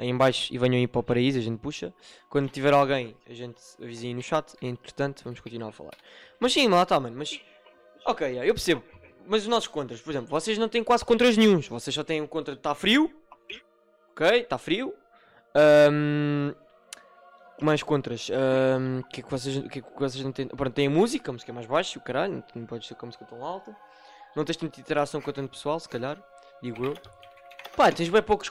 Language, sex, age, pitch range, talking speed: Portuguese, male, 20-39, 125-160 Hz, 215 wpm